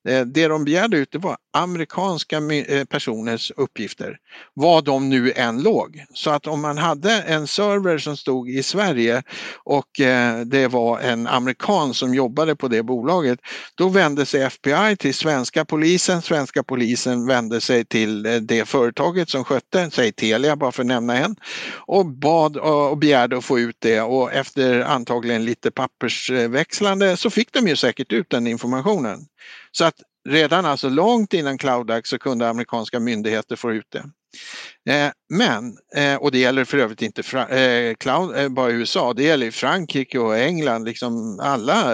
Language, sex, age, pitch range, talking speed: Swedish, male, 60-79, 120-155 Hz, 165 wpm